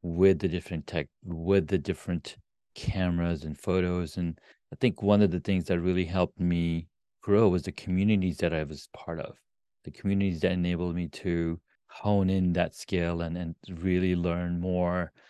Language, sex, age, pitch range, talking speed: English, male, 30-49, 85-100 Hz, 175 wpm